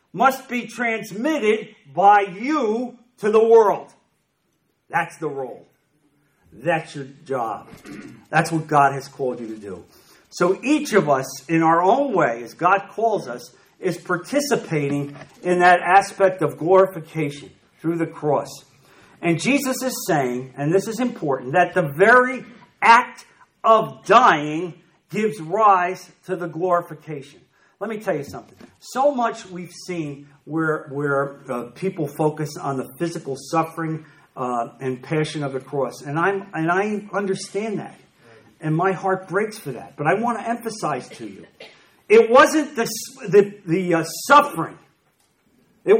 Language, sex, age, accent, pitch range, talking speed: English, male, 50-69, American, 150-230 Hz, 150 wpm